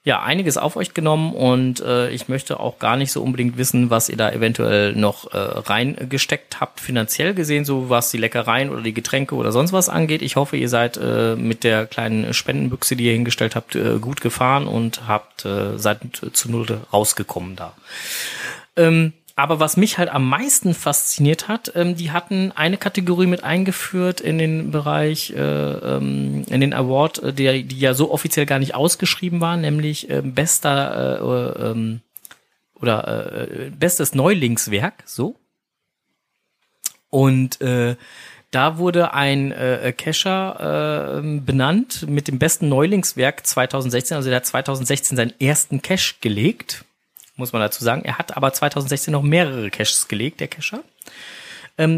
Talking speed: 160 wpm